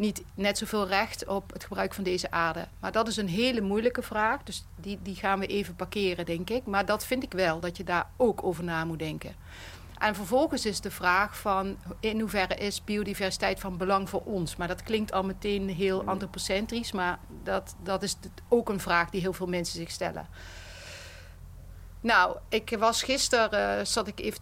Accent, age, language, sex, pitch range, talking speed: Dutch, 40-59, Dutch, female, 170-205 Hz, 195 wpm